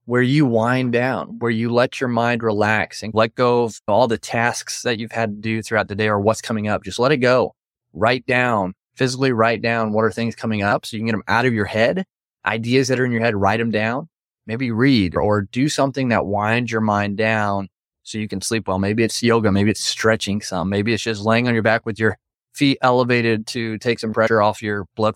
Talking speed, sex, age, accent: 240 wpm, male, 20-39, American